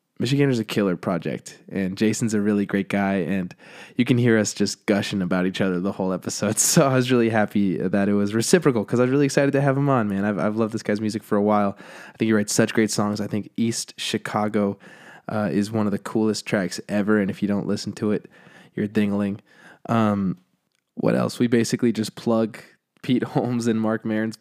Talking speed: 225 wpm